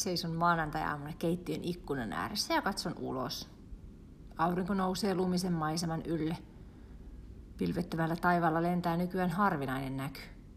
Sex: female